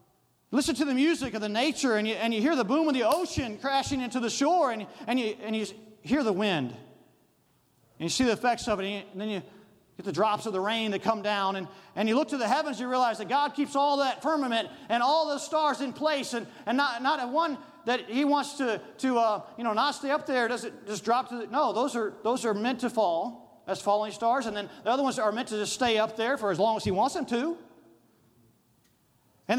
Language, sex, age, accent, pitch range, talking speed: English, male, 40-59, American, 215-290 Hz, 255 wpm